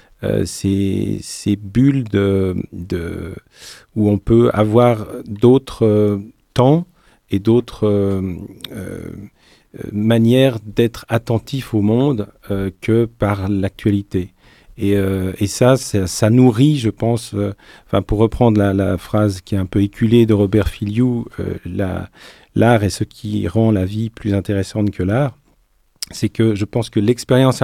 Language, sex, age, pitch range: French, male, 40-59, 100-120 Hz